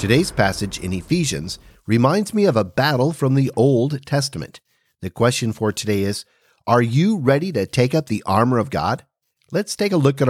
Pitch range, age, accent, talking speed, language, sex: 110-160 Hz, 40-59, American, 190 wpm, English, male